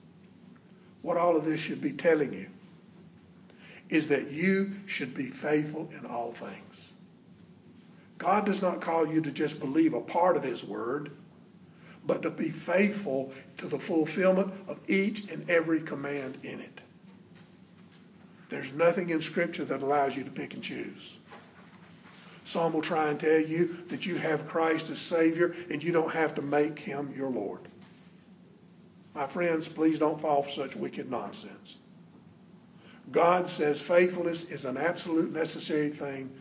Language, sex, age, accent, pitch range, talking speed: English, male, 50-69, American, 145-180 Hz, 155 wpm